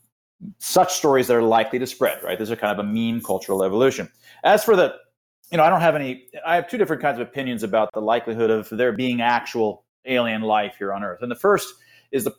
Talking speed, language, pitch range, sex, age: 235 wpm, English, 120-160 Hz, male, 30-49